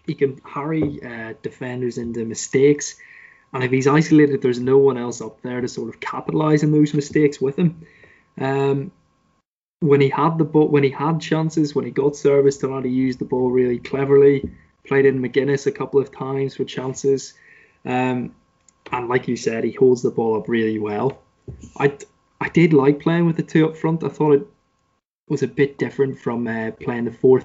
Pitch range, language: 120-145 Hz, English